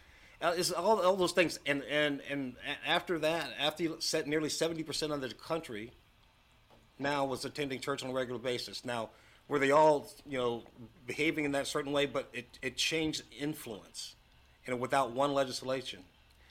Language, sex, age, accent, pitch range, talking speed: English, male, 50-69, American, 115-150 Hz, 175 wpm